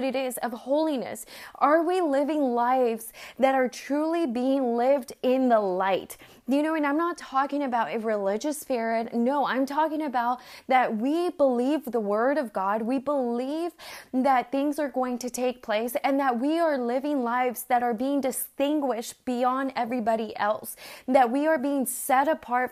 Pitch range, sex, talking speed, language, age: 235-285 Hz, female, 170 wpm, English, 20-39